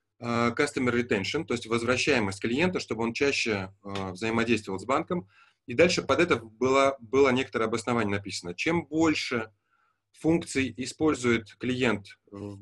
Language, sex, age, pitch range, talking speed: Russian, male, 20-39, 110-135 Hz, 130 wpm